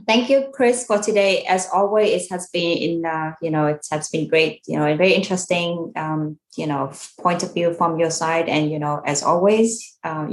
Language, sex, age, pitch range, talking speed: Vietnamese, female, 20-39, 155-200 Hz, 215 wpm